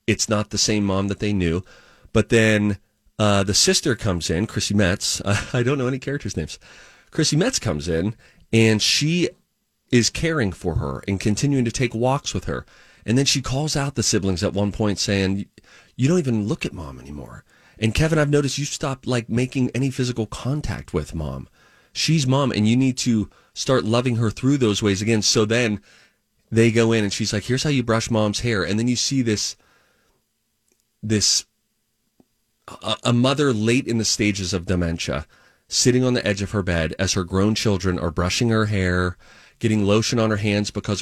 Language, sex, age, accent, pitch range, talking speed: English, male, 30-49, American, 100-125 Hz, 195 wpm